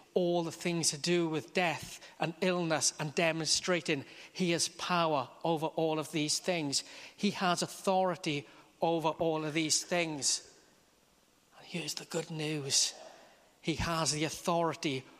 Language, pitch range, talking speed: English, 160-185 Hz, 140 wpm